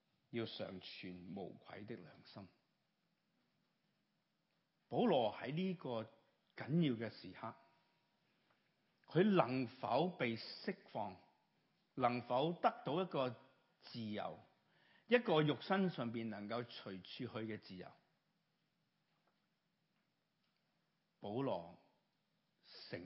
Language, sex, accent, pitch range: Chinese, male, native, 115-175 Hz